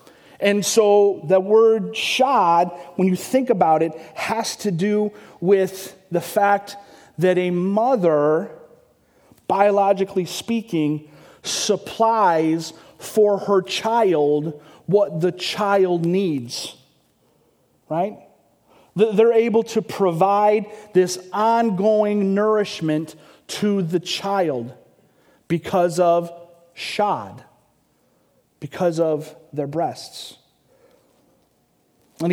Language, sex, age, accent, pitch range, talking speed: English, male, 40-59, American, 165-205 Hz, 90 wpm